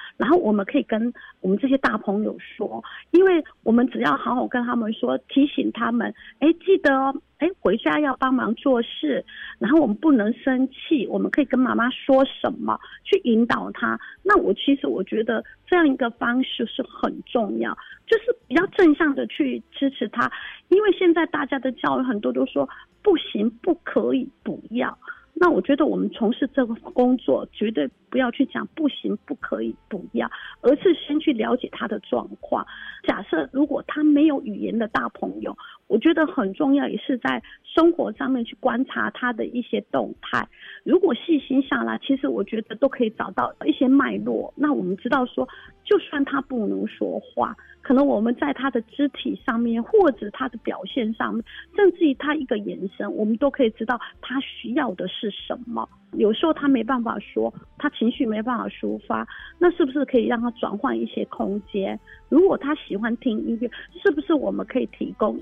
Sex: female